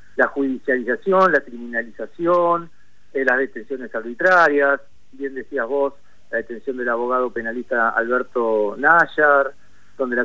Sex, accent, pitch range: male, Argentinian, 120-155 Hz